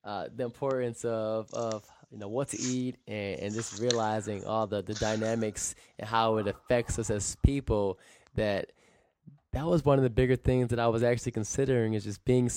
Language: English